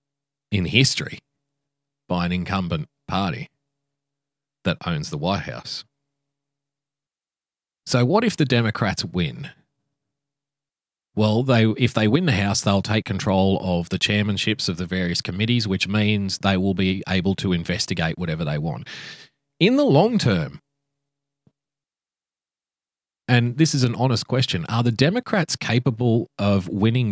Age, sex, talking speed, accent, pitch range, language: 30-49, male, 135 wpm, Australian, 95-140 Hz, English